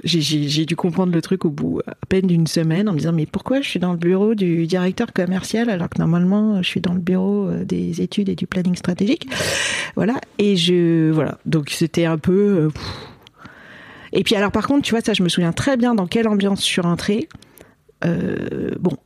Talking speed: 220 wpm